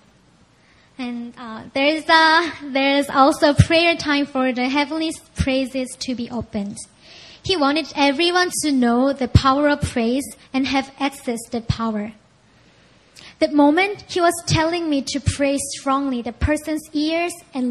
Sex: male